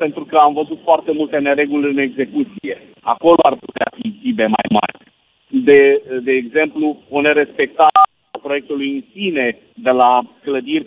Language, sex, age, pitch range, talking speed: Romanian, male, 50-69, 130-170 Hz, 150 wpm